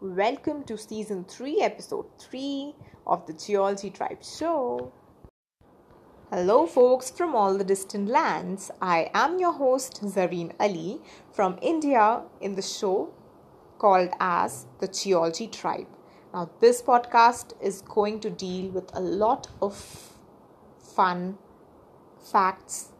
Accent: Indian